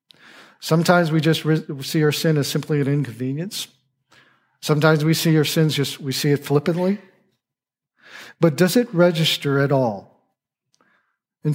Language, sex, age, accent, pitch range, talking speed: English, male, 50-69, American, 130-160 Hz, 140 wpm